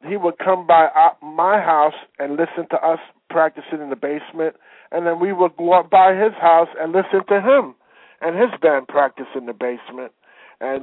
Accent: American